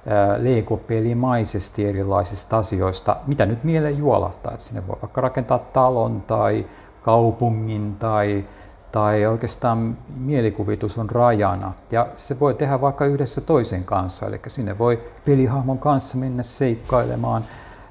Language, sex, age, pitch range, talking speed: Finnish, male, 50-69, 100-125 Hz, 120 wpm